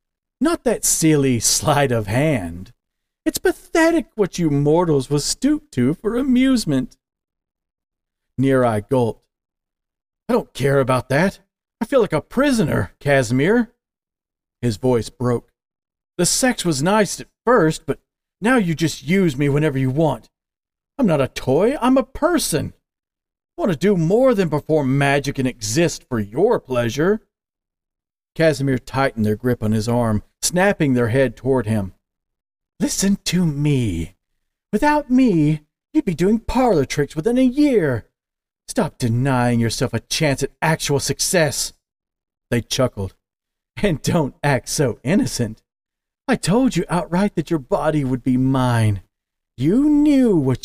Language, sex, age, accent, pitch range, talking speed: English, male, 40-59, American, 120-195 Hz, 145 wpm